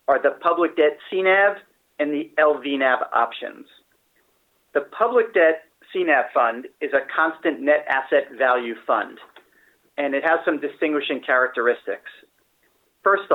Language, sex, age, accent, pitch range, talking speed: English, male, 40-59, American, 140-205 Hz, 125 wpm